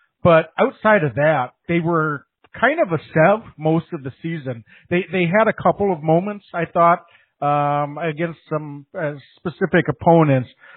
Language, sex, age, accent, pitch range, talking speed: English, male, 50-69, American, 140-170 Hz, 160 wpm